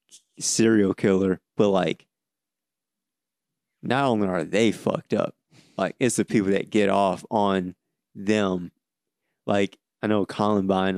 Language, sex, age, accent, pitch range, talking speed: English, male, 30-49, American, 95-105 Hz, 125 wpm